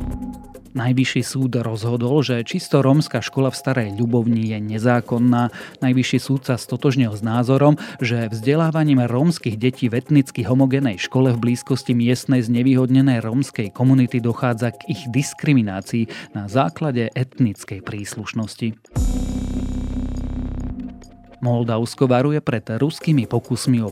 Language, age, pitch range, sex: Slovak, 30-49, 110-135 Hz, male